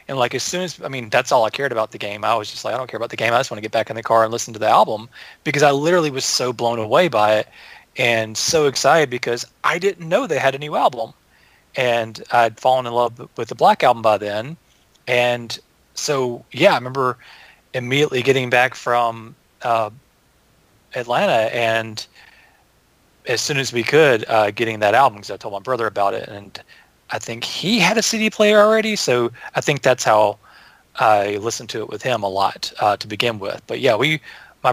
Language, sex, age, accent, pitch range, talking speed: English, male, 30-49, American, 115-140 Hz, 220 wpm